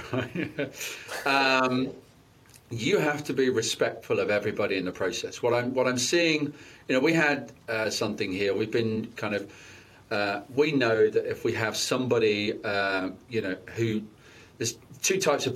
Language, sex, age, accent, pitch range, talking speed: English, male, 40-59, British, 105-140 Hz, 160 wpm